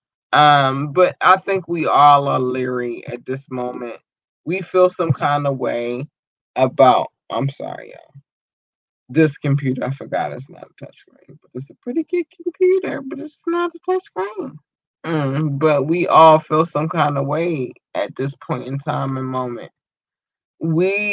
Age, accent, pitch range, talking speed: 20-39, American, 135-175 Hz, 160 wpm